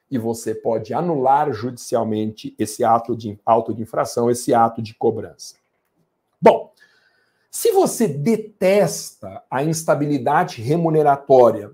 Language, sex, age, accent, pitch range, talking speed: Portuguese, male, 50-69, Brazilian, 140-190 Hz, 110 wpm